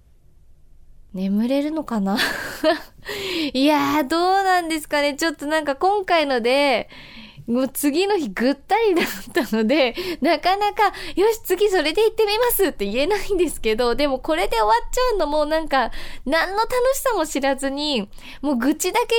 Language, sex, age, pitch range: Japanese, female, 20-39, 225-345 Hz